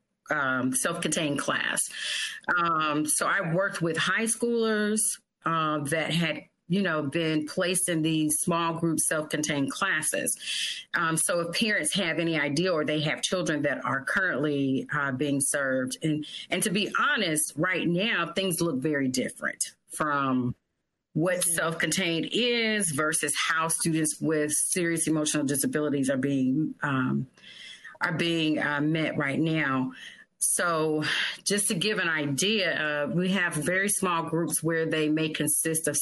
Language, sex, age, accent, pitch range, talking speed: English, female, 40-59, American, 145-175 Hz, 150 wpm